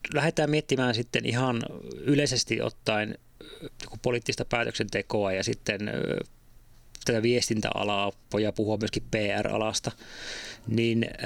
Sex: male